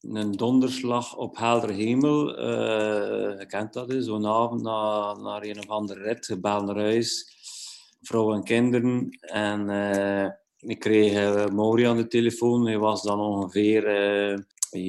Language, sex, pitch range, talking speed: Dutch, male, 110-130 Hz, 145 wpm